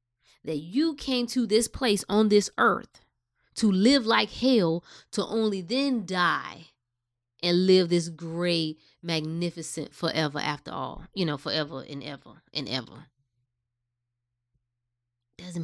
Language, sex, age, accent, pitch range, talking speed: English, female, 20-39, American, 145-210 Hz, 125 wpm